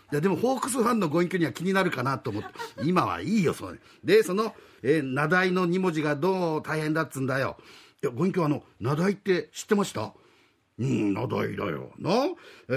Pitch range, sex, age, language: 155-220 Hz, male, 50-69, Japanese